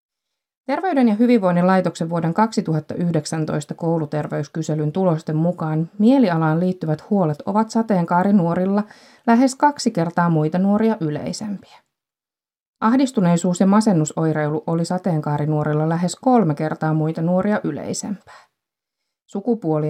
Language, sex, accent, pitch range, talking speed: Finnish, female, native, 155-215 Hz, 95 wpm